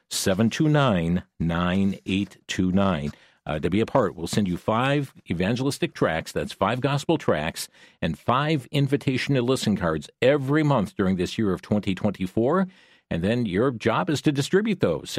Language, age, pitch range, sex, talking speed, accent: English, 50-69, 100-145 Hz, male, 180 wpm, American